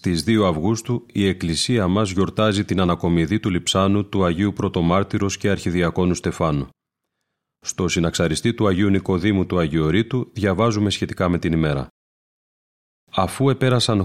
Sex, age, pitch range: male, 30-49, 90-110 Hz